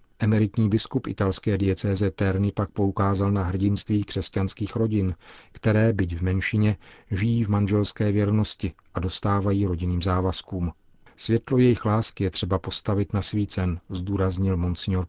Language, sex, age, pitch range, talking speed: Czech, male, 40-59, 95-105 Hz, 135 wpm